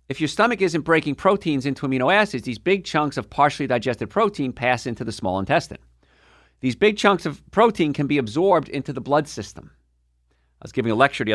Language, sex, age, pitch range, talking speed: English, male, 50-69, 100-140 Hz, 205 wpm